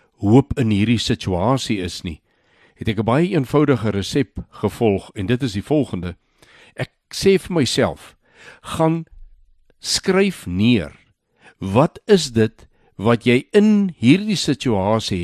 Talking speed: 125 wpm